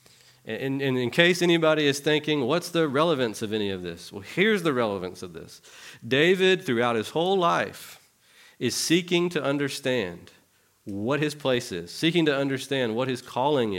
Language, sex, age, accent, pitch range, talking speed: English, male, 40-59, American, 110-150 Hz, 165 wpm